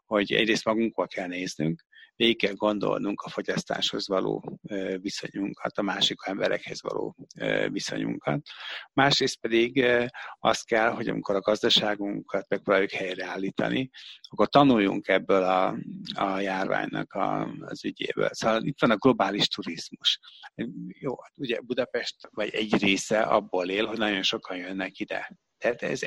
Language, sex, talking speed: Hungarian, male, 130 wpm